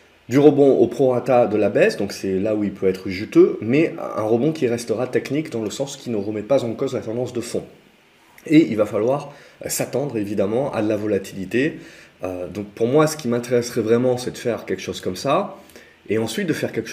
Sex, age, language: male, 30-49, French